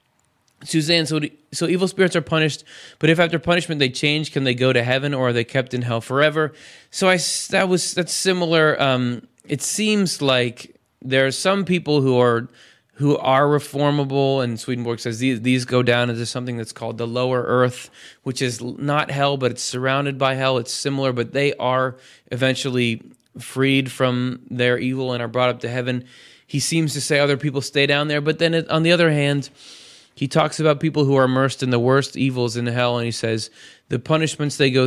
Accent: American